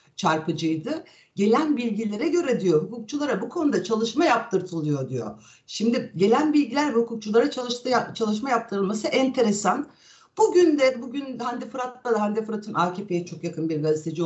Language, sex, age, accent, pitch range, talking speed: Turkish, female, 60-79, native, 205-295 Hz, 130 wpm